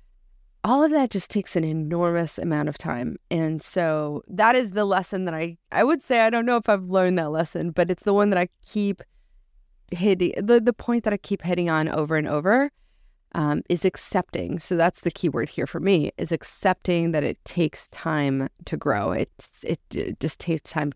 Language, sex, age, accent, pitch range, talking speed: English, female, 20-39, American, 155-200 Hz, 210 wpm